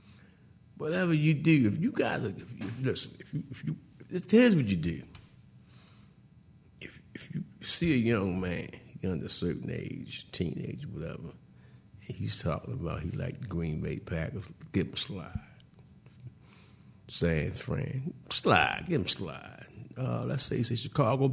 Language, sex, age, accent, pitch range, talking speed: English, male, 50-69, American, 95-135 Hz, 160 wpm